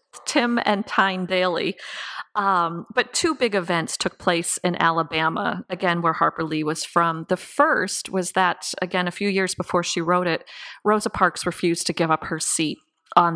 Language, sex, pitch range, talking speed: English, female, 165-195 Hz, 175 wpm